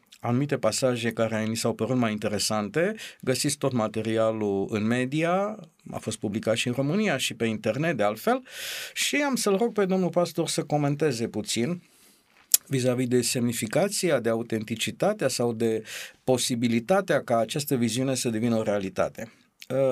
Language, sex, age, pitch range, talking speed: Romanian, male, 50-69, 125-180 Hz, 150 wpm